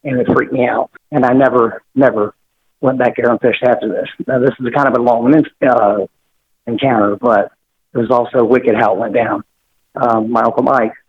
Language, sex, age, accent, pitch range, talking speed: English, male, 50-69, American, 115-130 Hz, 205 wpm